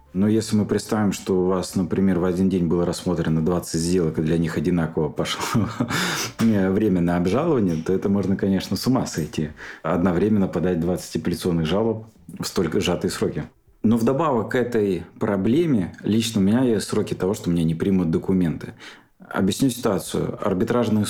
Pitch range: 85-110 Hz